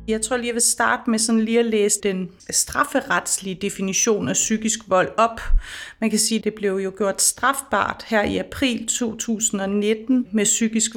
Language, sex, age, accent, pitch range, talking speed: Danish, female, 30-49, native, 200-225 Hz, 180 wpm